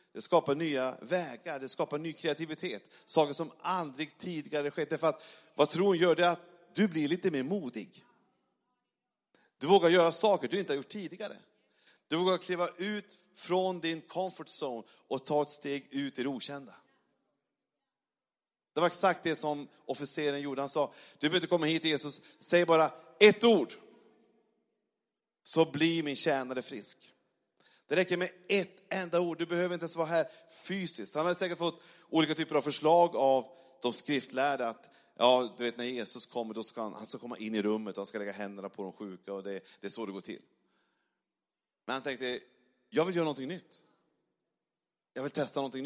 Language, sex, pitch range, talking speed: Swedish, male, 135-175 Hz, 180 wpm